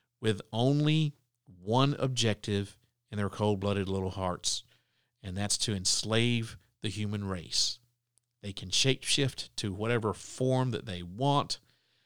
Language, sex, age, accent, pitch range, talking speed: English, male, 50-69, American, 100-120 Hz, 125 wpm